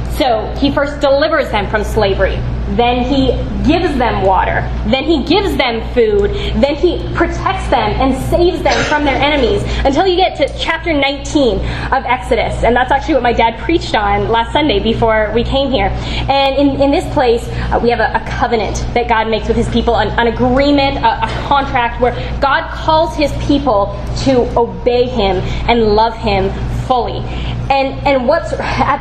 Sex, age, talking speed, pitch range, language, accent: female, 10-29, 180 wpm, 230-315 Hz, English, American